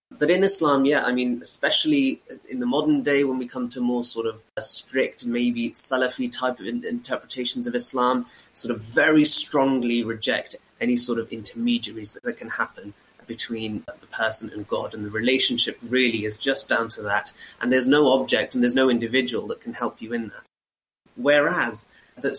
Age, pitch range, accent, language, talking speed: 20-39, 120-155 Hz, British, English, 180 wpm